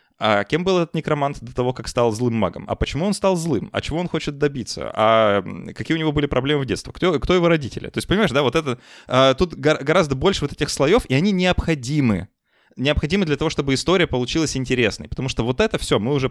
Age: 20-39